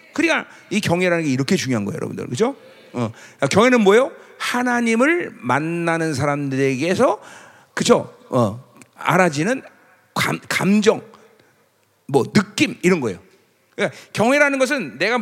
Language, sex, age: Korean, male, 40-59